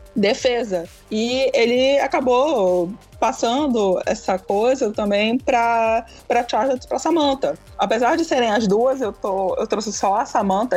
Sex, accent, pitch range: female, Brazilian, 185-240 Hz